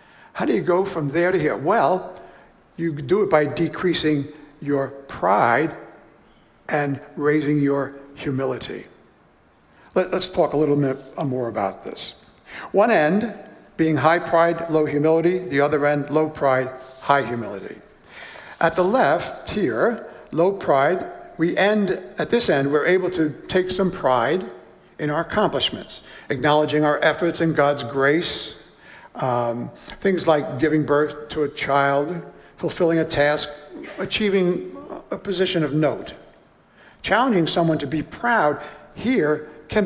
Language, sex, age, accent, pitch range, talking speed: English, male, 60-79, American, 145-185 Hz, 135 wpm